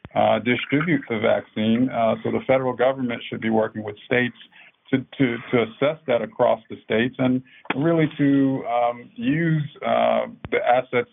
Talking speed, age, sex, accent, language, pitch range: 160 wpm, 50-69, male, American, English, 115-140 Hz